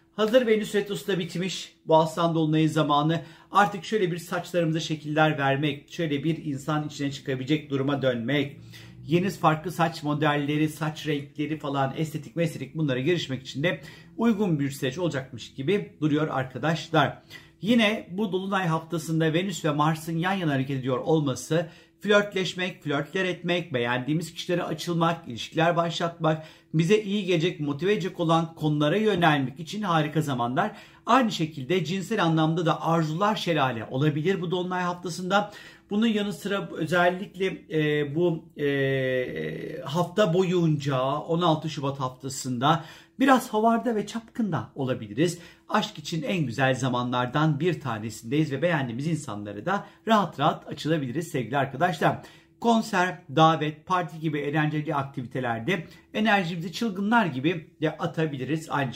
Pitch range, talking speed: 145-180 Hz, 130 wpm